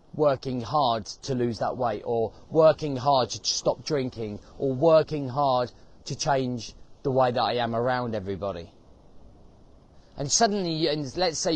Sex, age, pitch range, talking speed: male, 30-49, 115-155 Hz, 150 wpm